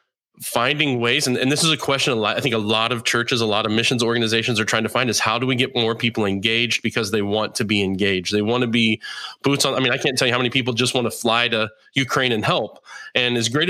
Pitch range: 110-135 Hz